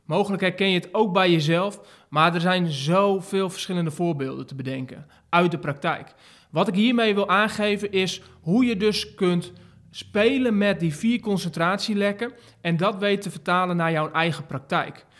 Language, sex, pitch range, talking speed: Dutch, male, 160-205 Hz, 165 wpm